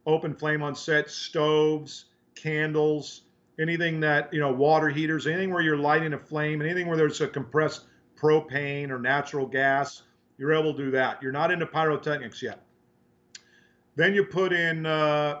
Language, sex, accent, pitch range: English, male, American, 140-155 Hz